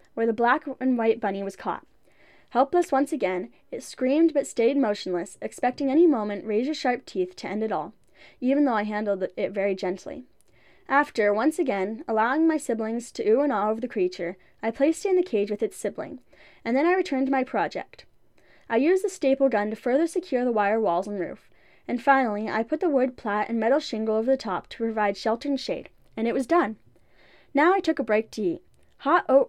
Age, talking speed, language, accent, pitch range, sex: 10-29, 220 wpm, English, American, 210-280 Hz, female